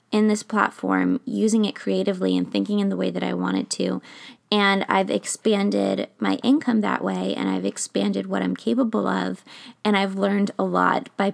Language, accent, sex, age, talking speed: English, American, female, 20-39, 190 wpm